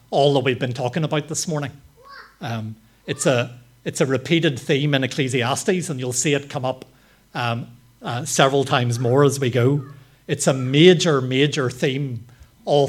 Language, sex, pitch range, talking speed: English, male, 125-150 Hz, 170 wpm